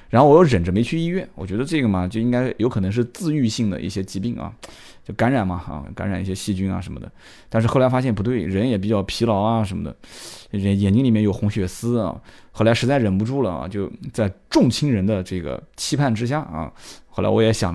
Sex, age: male, 20-39